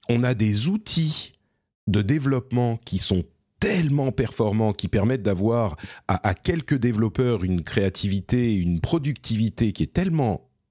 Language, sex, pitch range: French, male, 90-125 Hz